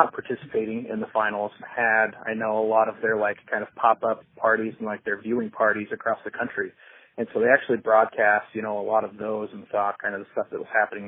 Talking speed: 240 wpm